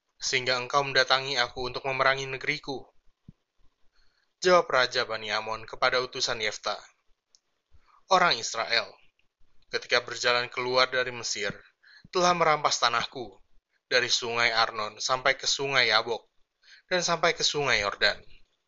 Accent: native